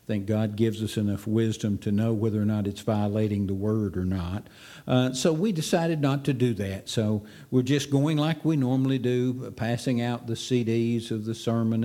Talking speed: 210 wpm